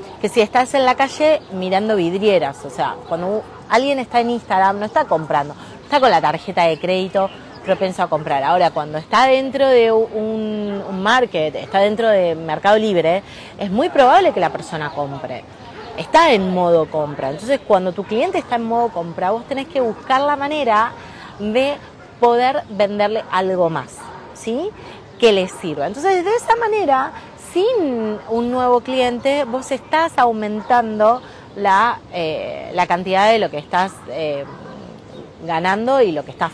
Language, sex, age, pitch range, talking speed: Spanish, female, 30-49, 180-245 Hz, 160 wpm